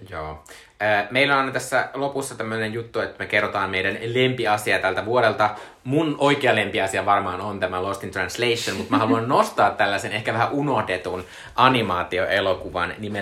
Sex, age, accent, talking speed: male, 20-39, native, 145 wpm